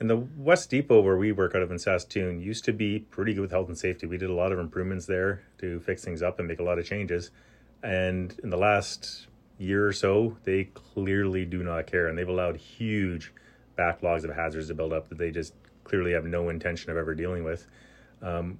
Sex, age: male, 30-49